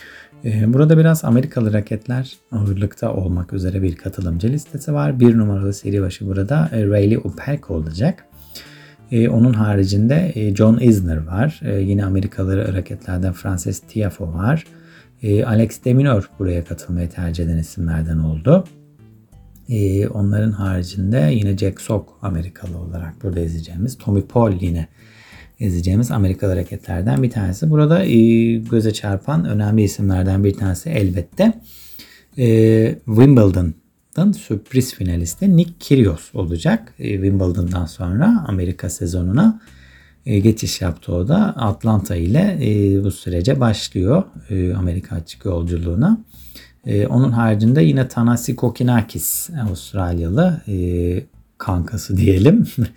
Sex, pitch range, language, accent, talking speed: male, 90-120 Hz, Turkish, native, 115 wpm